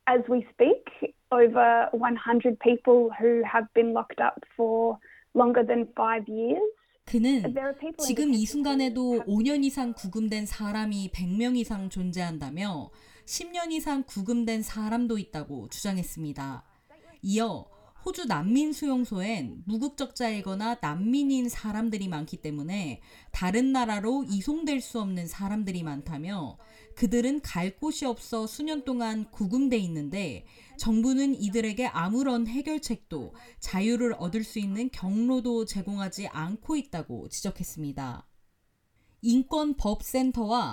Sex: female